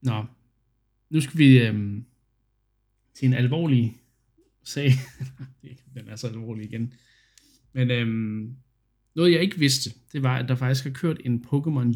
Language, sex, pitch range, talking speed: Danish, male, 115-130 Hz, 145 wpm